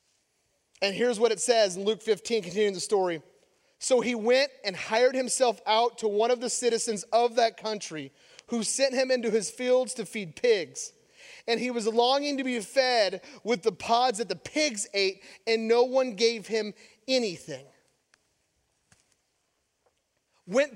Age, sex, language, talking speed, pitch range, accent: 30-49, male, English, 160 wpm, 235-320 Hz, American